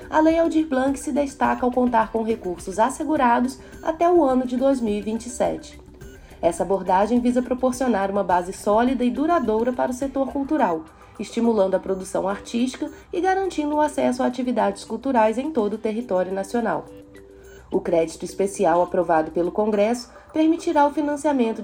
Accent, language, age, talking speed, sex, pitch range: Brazilian, Portuguese, 20-39, 150 wpm, female, 200-300 Hz